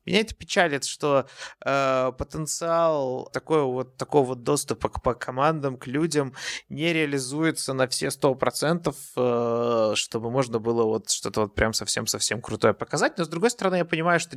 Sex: male